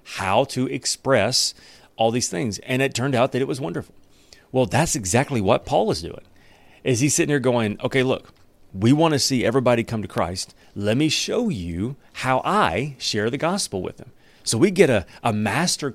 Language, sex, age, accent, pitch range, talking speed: English, male, 30-49, American, 105-140 Hz, 200 wpm